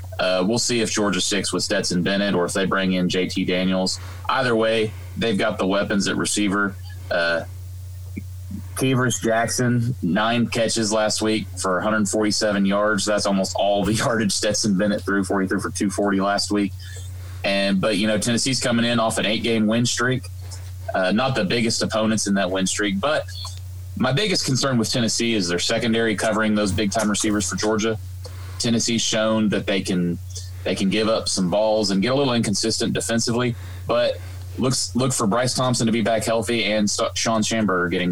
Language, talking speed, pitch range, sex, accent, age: English, 180 wpm, 95-110 Hz, male, American, 30-49